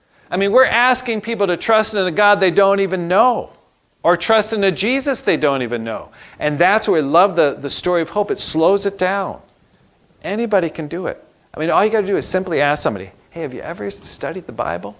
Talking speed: 235 wpm